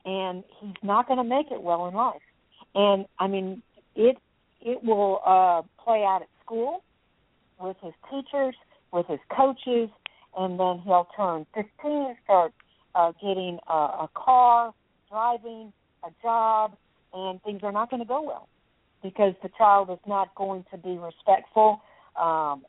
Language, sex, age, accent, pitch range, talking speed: English, female, 50-69, American, 175-220 Hz, 160 wpm